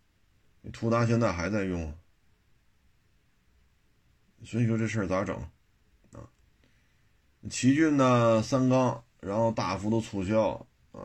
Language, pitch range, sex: Chinese, 85-120 Hz, male